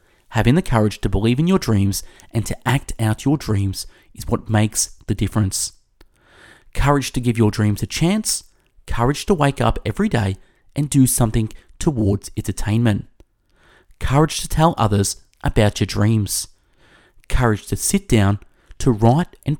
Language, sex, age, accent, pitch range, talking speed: English, male, 30-49, Australian, 100-130 Hz, 160 wpm